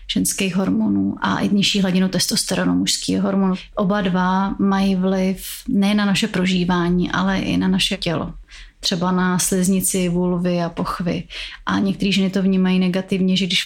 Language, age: Czech, 30-49